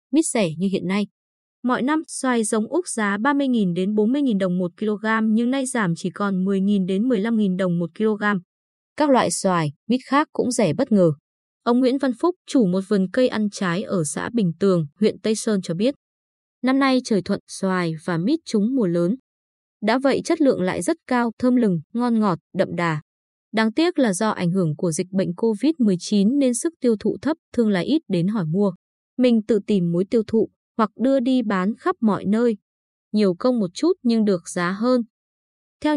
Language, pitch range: Vietnamese, 190-250 Hz